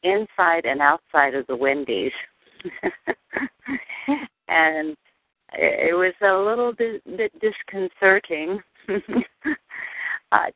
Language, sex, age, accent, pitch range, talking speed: English, female, 50-69, American, 140-180 Hz, 85 wpm